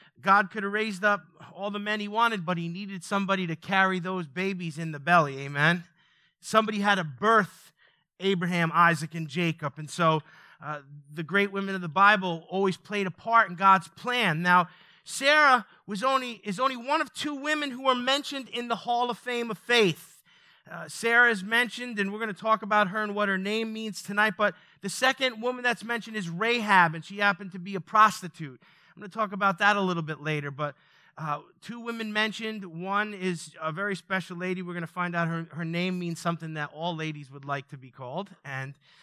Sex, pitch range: male, 160-215 Hz